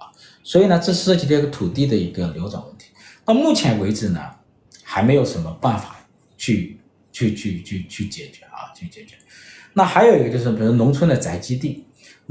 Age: 50-69